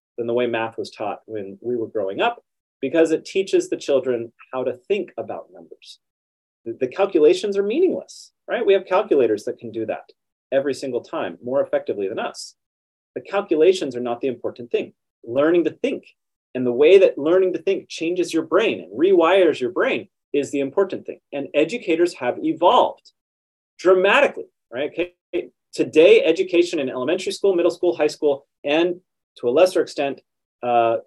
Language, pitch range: English, 130-205 Hz